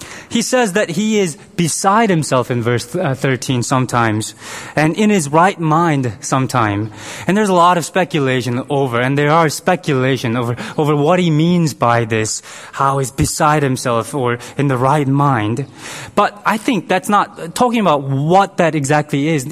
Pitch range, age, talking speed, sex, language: 135-210 Hz, 20-39, 170 wpm, male, English